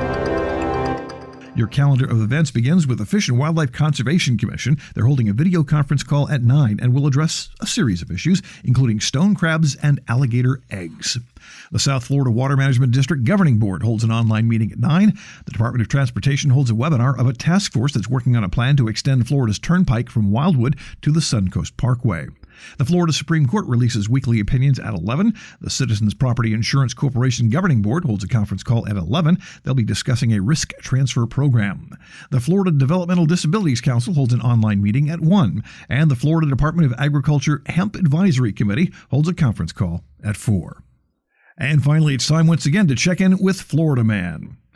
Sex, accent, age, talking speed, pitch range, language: male, American, 50-69, 190 wpm, 115-155 Hz, English